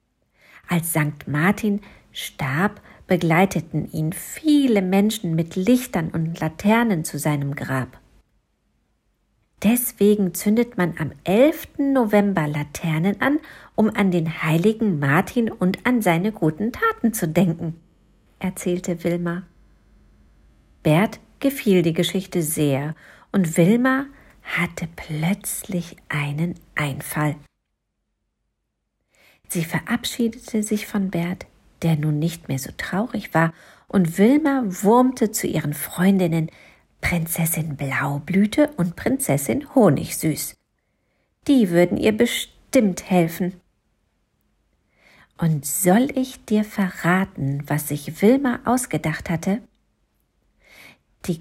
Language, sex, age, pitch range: German, female, 50-69, 160-215 Hz